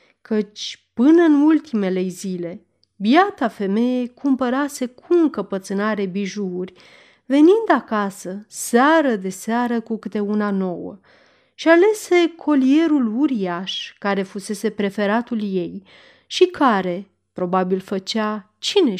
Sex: female